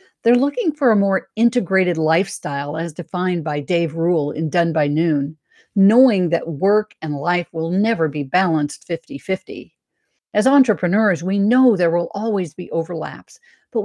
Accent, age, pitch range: American, 50-69, 160-215 Hz